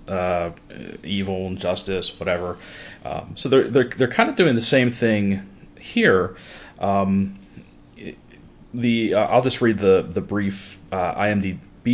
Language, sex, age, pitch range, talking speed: English, male, 30-49, 95-115 Hz, 140 wpm